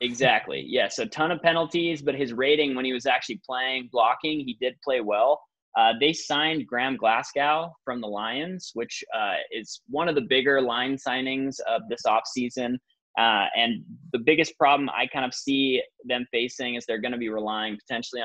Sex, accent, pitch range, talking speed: male, American, 125-150 Hz, 185 wpm